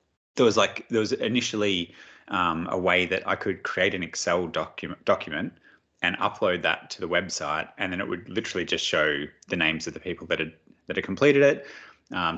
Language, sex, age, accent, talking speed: English, male, 20-39, Australian, 205 wpm